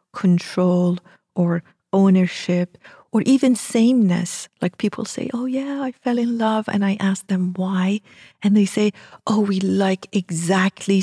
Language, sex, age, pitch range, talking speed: English, female, 40-59, 175-200 Hz, 145 wpm